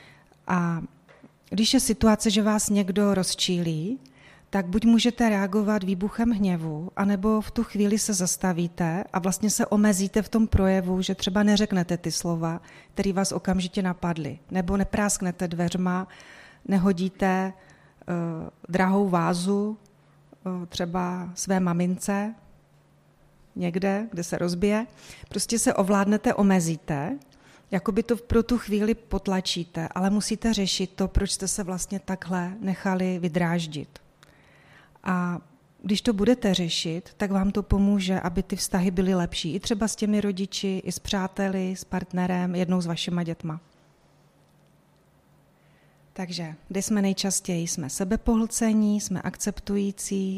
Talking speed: 125 wpm